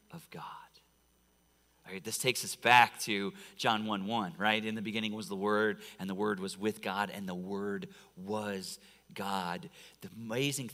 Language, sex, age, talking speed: English, male, 40-59, 170 wpm